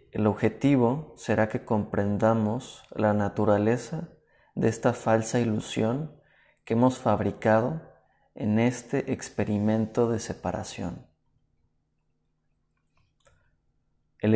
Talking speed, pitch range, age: 85 wpm, 105-125 Hz, 30-49